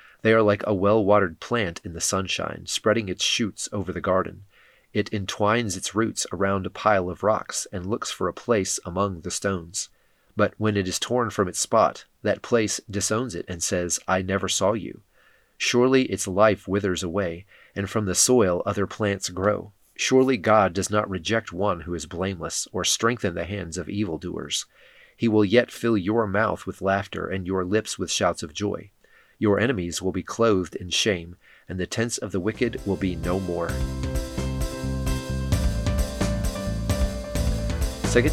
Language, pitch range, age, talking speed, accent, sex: English, 90-110 Hz, 30-49, 170 wpm, American, male